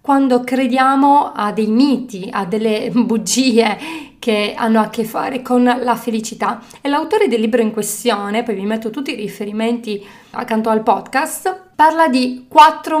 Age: 30-49